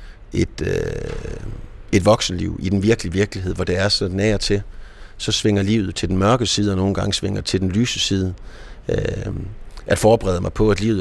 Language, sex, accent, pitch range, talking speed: Danish, male, native, 95-110 Hz, 190 wpm